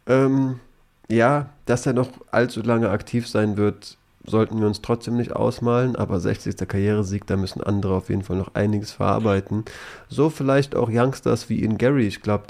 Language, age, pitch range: German, 30-49, 100-120 Hz